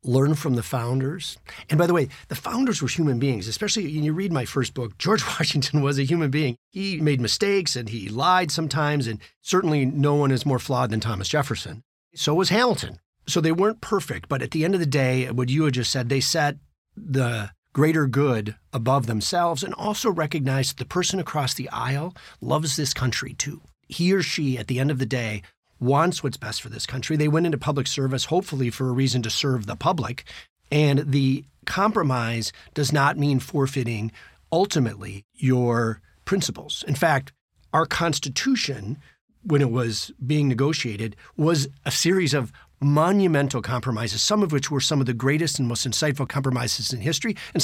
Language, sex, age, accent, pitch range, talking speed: English, male, 40-59, American, 125-160 Hz, 190 wpm